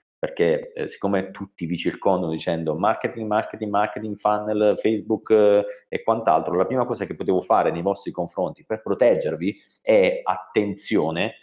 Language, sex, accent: Italian, male, native